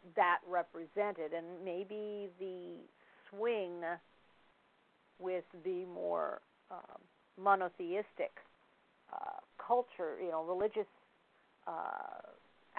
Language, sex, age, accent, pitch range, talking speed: English, female, 50-69, American, 165-210 Hz, 80 wpm